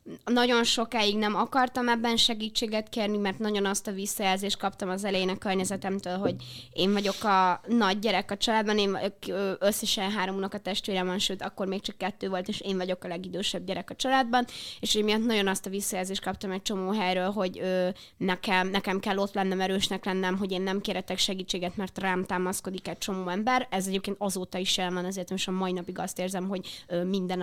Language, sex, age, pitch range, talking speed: Hungarian, female, 20-39, 185-210 Hz, 195 wpm